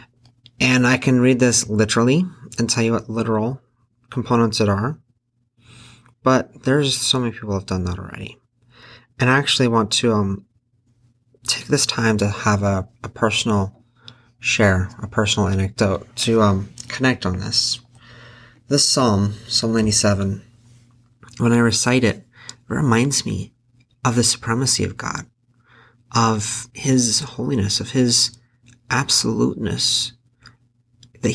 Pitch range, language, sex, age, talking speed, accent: 110-125 Hz, English, male, 30-49, 130 wpm, American